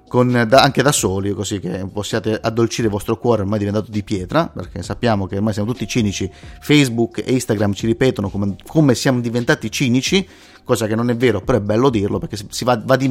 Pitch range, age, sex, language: 105-125 Hz, 30-49, male, Italian